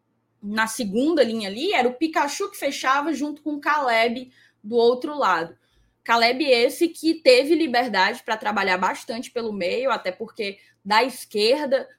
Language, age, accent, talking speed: Portuguese, 10-29, Brazilian, 150 wpm